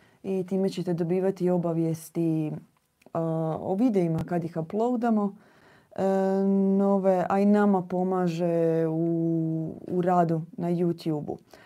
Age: 30-49